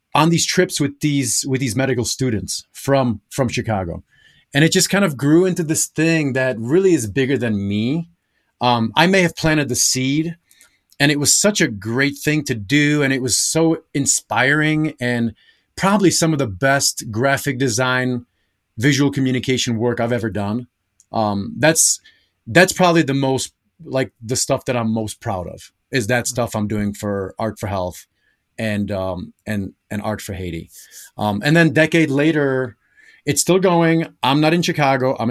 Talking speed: 180 wpm